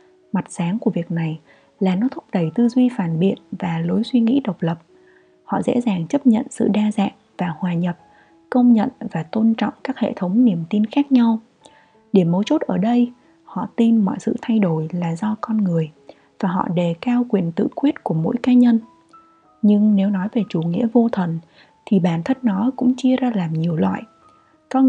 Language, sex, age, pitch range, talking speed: Vietnamese, female, 20-39, 180-245 Hz, 210 wpm